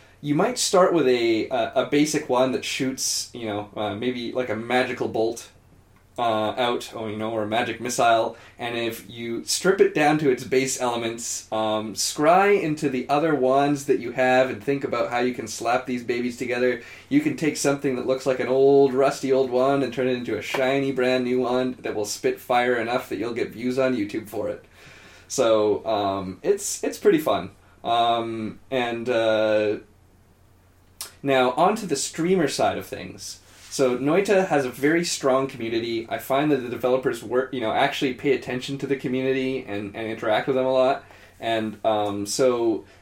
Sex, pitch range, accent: male, 110-140 Hz, American